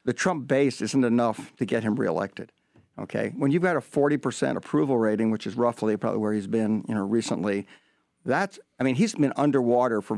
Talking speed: 200 wpm